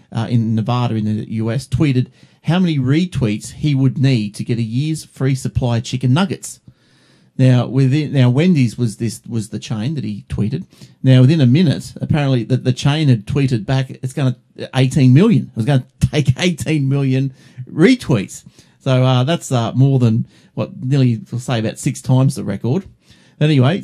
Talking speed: 185 wpm